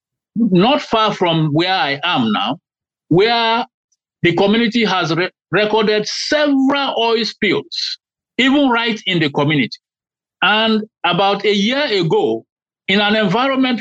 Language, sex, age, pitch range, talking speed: English, male, 50-69, 170-235 Hz, 125 wpm